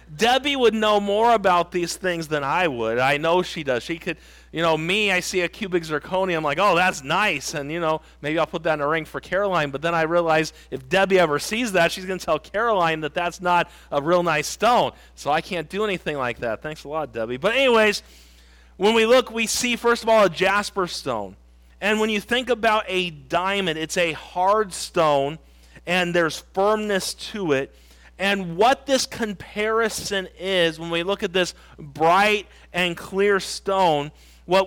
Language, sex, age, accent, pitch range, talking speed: English, male, 40-59, American, 160-205 Hz, 205 wpm